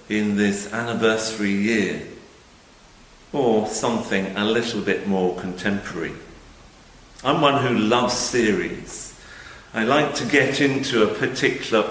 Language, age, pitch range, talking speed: English, 50-69, 95-115 Hz, 115 wpm